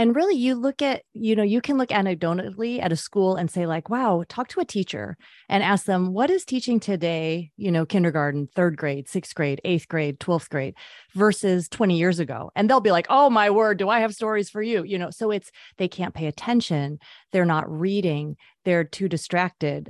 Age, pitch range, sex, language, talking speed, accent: 30-49, 170-215 Hz, female, English, 215 wpm, American